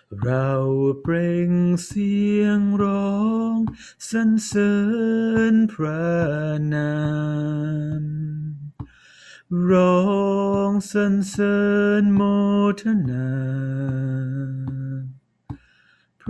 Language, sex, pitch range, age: Thai, male, 140-205 Hz, 30-49